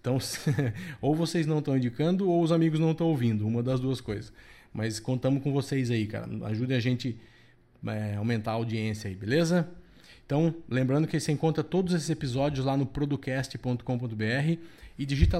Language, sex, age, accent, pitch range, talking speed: Portuguese, male, 20-39, Brazilian, 120-150 Hz, 170 wpm